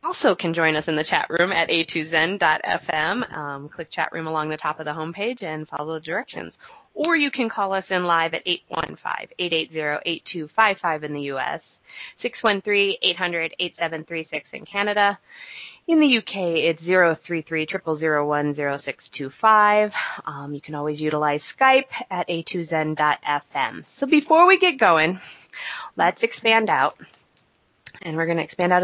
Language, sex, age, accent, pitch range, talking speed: English, female, 20-39, American, 160-200 Hz, 135 wpm